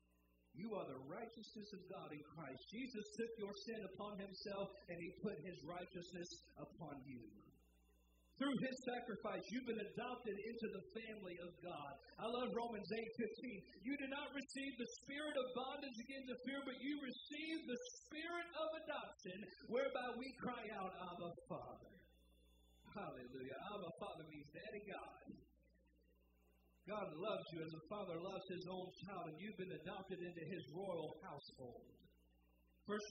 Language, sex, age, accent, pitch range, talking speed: English, male, 50-69, American, 175-240 Hz, 160 wpm